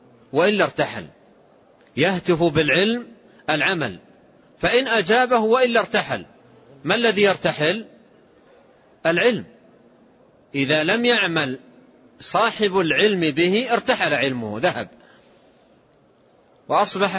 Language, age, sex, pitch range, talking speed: Arabic, 40-59, male, 165-225 Hz, 80 wpm